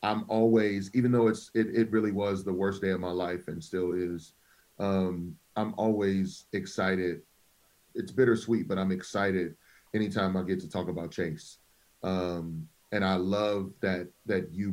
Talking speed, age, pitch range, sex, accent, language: 165 wpm, 30-49, 90-105 Hz, male, American, English